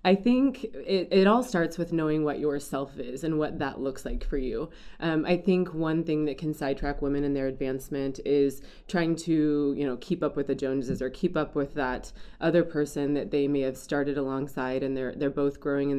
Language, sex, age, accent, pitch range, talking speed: English, female, 20-39, American, 135-160 Hz, 220 wpm